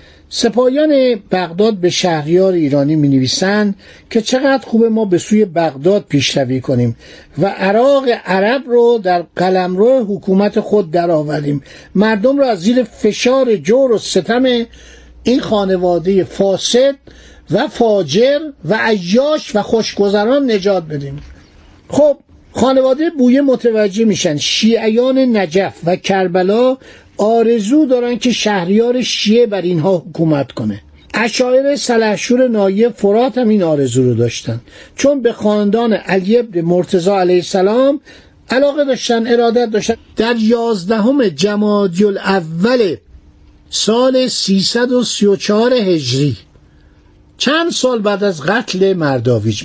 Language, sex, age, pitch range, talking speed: Persian, male, 50-69, 175-240 Hz, 115 wpm